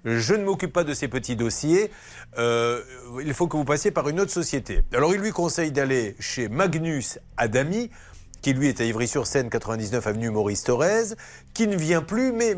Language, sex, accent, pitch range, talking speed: French, male, French, 130-200 Hz, 190 wpm